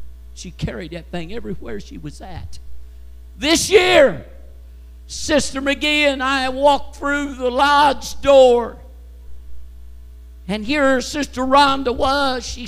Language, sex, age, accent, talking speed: English, male, 50-69, American, 120 wpm